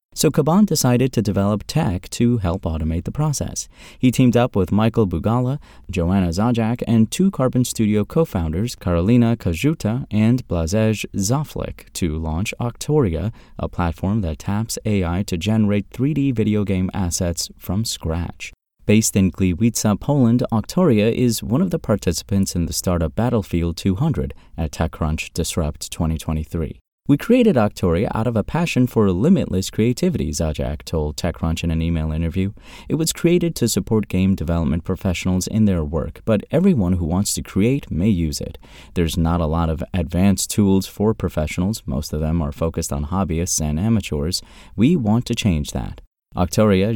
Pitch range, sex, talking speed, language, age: 85-115 Hz, male, 160 wpm, English, 30-49